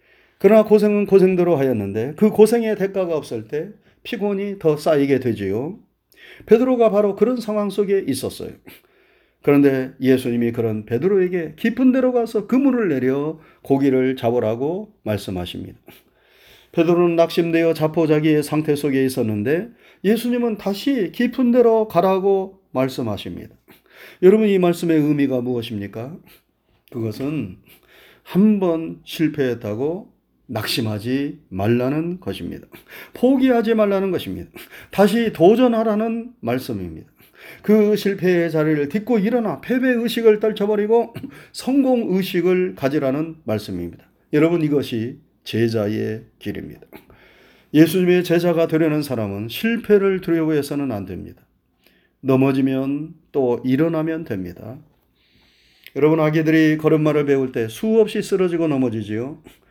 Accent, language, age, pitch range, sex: native, Korean, 40-59, 130-205 Hz, male